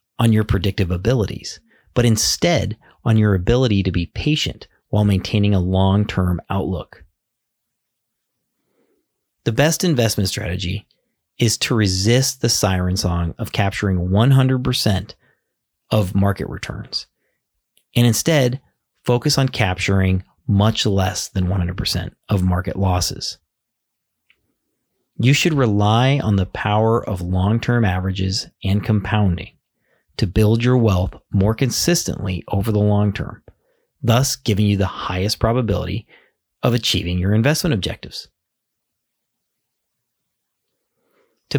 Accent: American